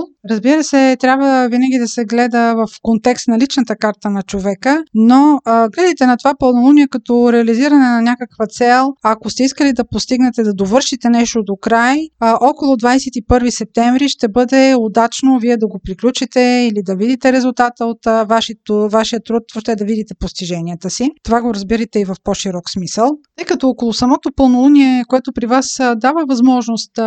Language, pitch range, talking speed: Bulgarian, 220-260 Hz, 165 wpm